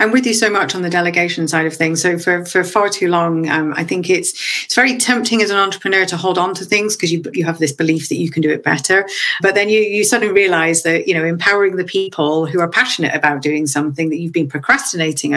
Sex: female